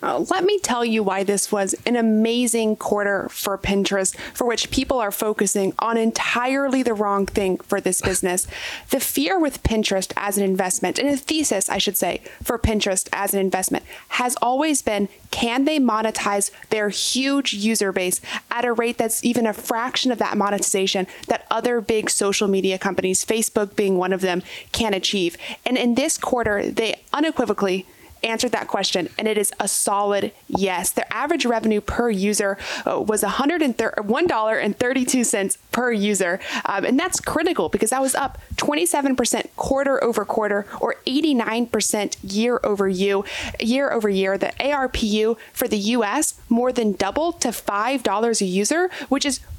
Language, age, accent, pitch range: English, 30-49, American, 200-250 Hz